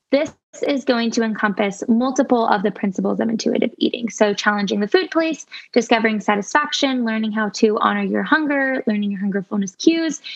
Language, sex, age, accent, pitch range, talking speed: English, female, 10-29, American, 210-255 Hz, 170 wpm